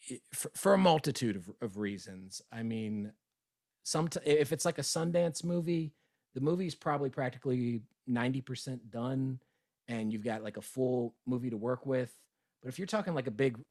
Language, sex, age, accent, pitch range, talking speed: English, male, 40-59, American, 110-135 Hz, 165 wpm